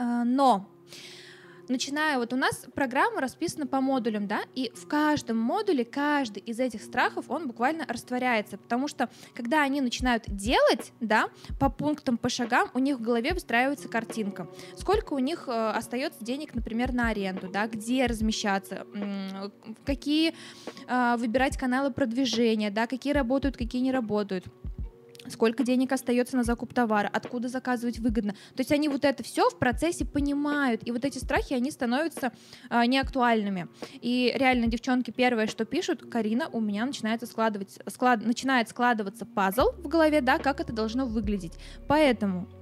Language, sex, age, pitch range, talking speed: Russian, female, 20-39, 225-275 Hz, 150 wpm